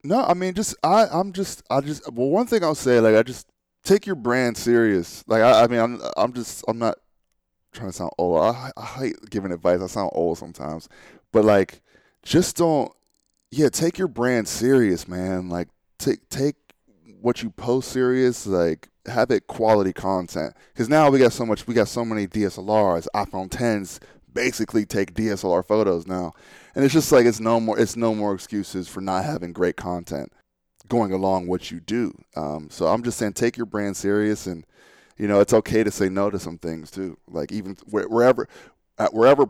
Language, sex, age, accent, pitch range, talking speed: English, male, 10-29, American, 90-120 Hz, 200 wpm